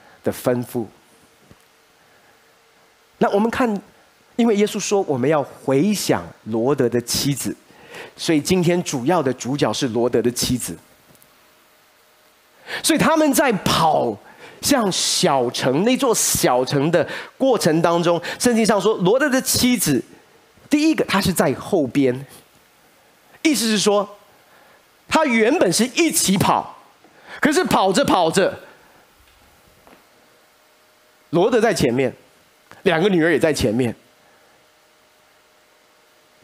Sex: male